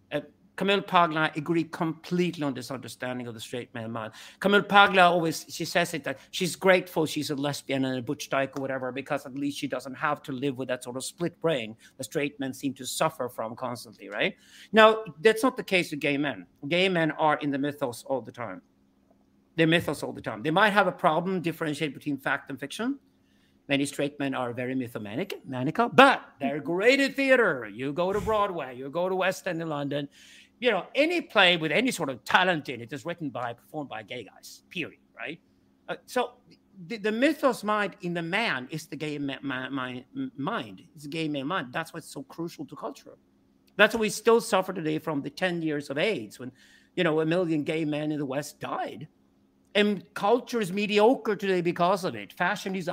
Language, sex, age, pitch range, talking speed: English, male, 50-69, 135-190 Hz, 210 wpm